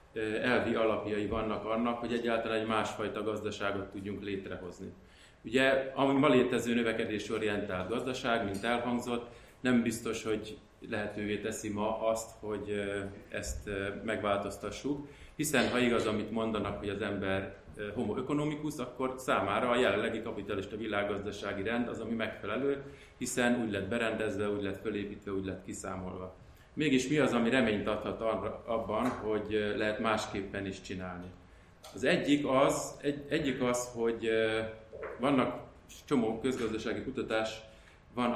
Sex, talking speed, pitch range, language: male, 130 wpm, 105-125 Hz, Hungarian